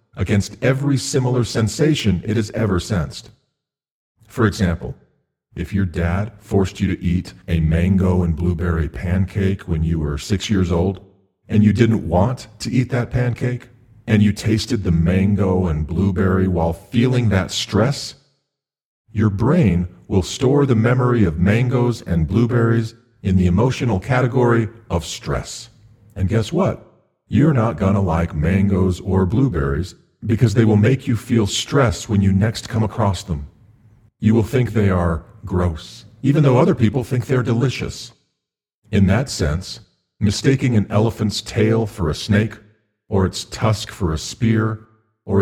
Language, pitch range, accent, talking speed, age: English, 95-120 Hz, American, 155 wpm, 40-59